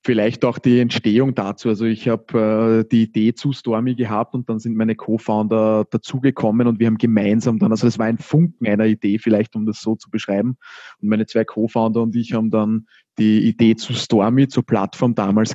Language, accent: German, Austrian